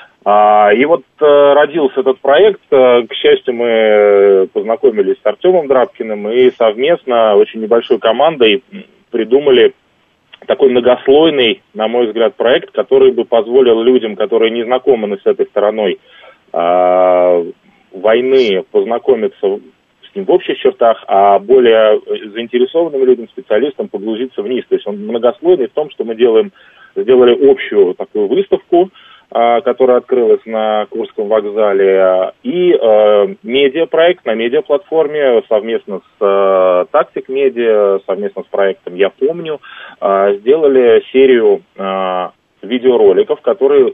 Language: Russian